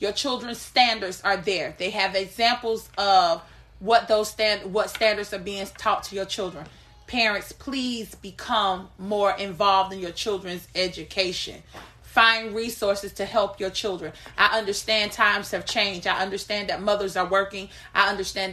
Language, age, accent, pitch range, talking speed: English, 30-49, American, 190-220 Hz, 155 wpm